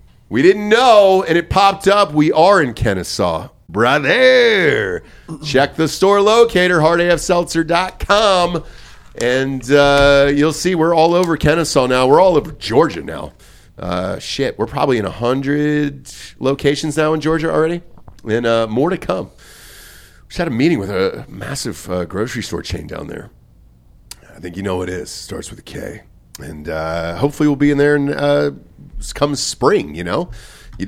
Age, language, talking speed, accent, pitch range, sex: 40-59, English, 165 wpm, American, 110-165 Hz, male